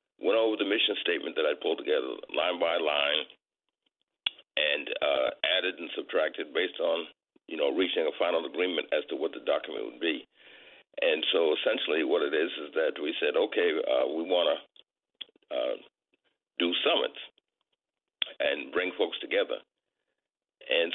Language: English